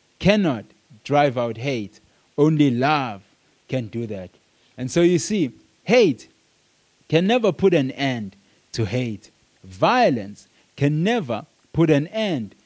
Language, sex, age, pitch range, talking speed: English, male, 30-49, 120-175 Hz, 130 wpm